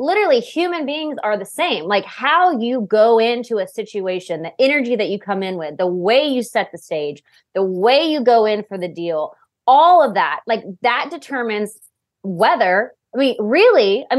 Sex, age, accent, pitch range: female, 20-39, American, 190-270 Hz